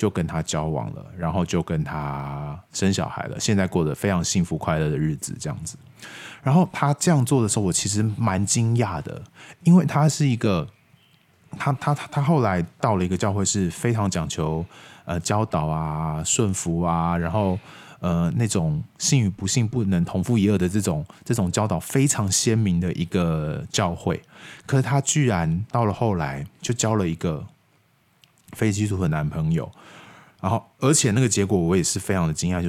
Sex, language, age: male, Chinese, 20-39